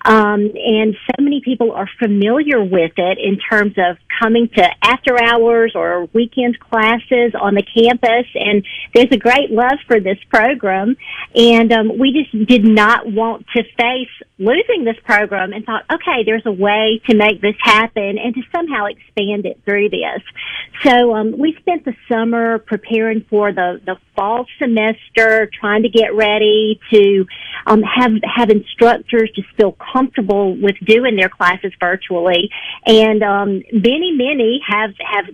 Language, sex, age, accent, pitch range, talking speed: English, female, 50-69, American, 200-235 Hz, 160 wpm